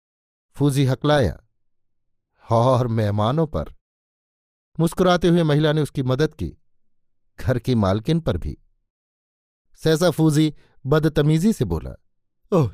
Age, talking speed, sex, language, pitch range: 50-69, 110 wpm, male, Hindi, 110-150 Hz